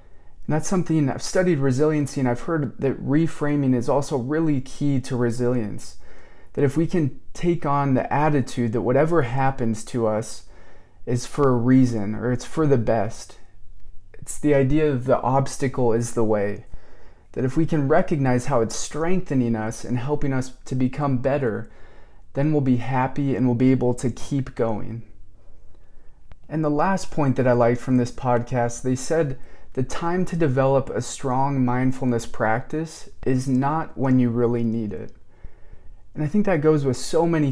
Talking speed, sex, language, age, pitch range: 175 wpm, male, English, 20-39, 115-145 Hz